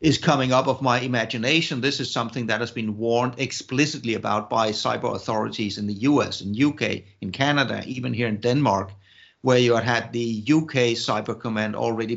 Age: 50-69